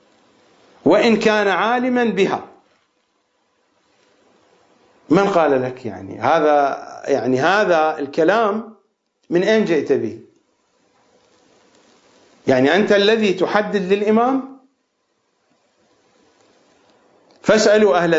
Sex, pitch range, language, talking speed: male, 165-235 Hz, English, 75 wpm